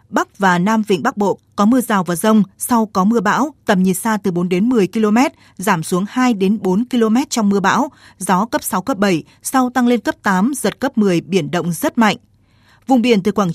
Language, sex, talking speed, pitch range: Vietnamese, female, 235 wpm, 185-240 Hz